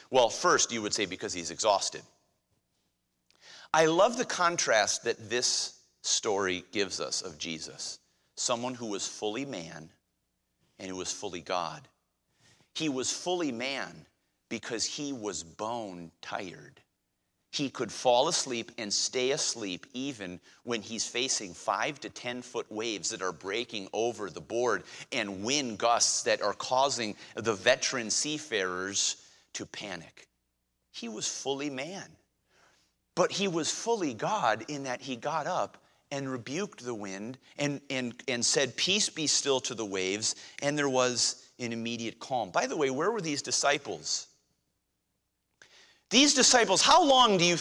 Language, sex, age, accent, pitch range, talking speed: English, male, 40-59, American, 115-190 Hz, 150 wpm